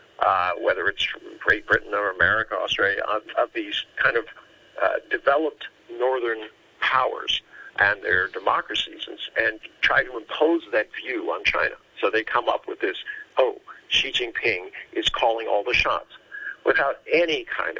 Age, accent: 50-69, American